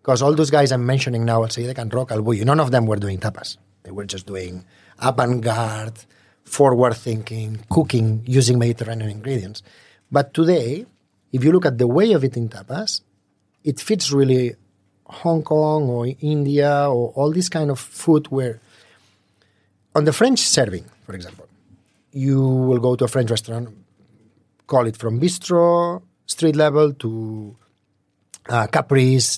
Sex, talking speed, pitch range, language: male, 155 wpm, 110-145 Hz, English